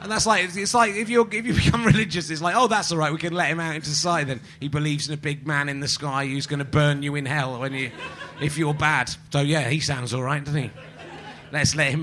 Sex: male